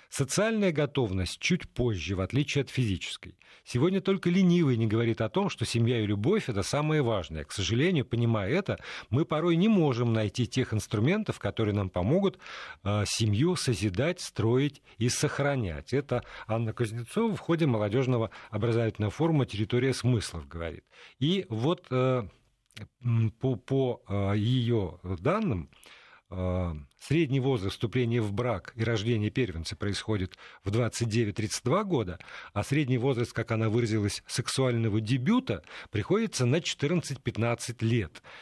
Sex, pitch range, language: male, 110-145 Hz, Russian